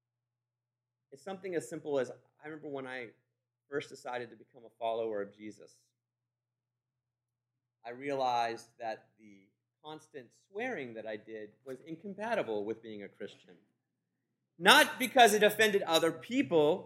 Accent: American